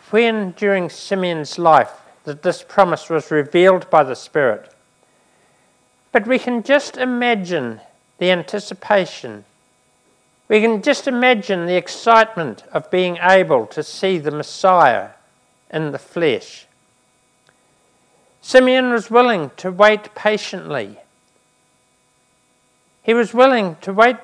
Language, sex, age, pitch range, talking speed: English, male, 50-69, 165-225 Hz, 115 wpm